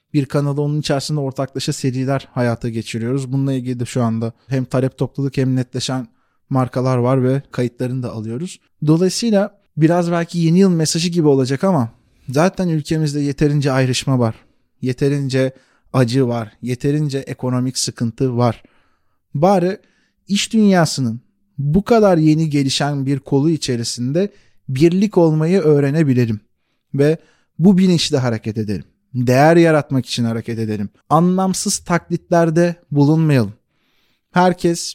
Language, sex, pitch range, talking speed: Turkish, male, 125-170 Hz, 120 wpm